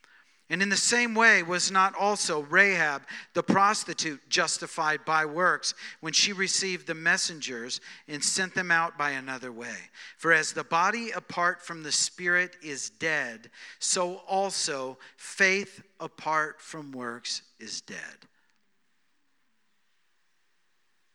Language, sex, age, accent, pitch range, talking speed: English, male, 50-69, American, 120-175 Hz, 125 wpm